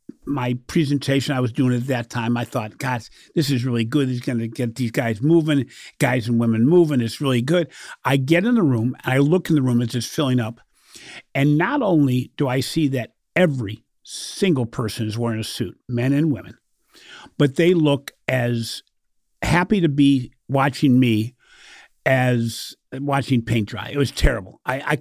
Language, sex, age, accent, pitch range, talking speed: English, male, 50-69, American, 120-155 Hz, 190 wpm